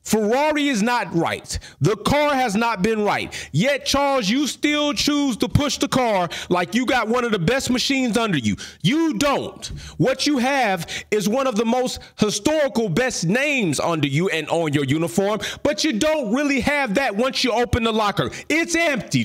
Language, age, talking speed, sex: English, 40-59, 190 wpm, male